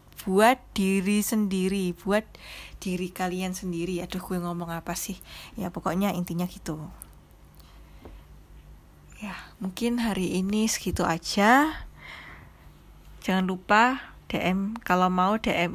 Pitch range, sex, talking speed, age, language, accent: 180-210 Hz, female, 105 wpm, 20-39, Indonesian, native